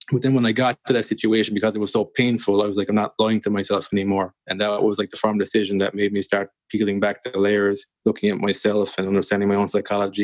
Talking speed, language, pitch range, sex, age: 265 wpm, English, 100-115 Hz, male, 20-39